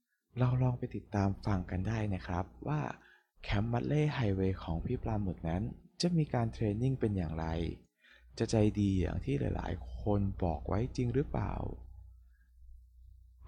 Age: 20-39